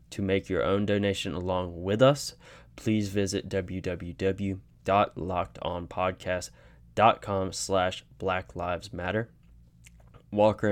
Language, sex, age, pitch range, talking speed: English, male, 10-29, 90-100 Hz, 80 wpm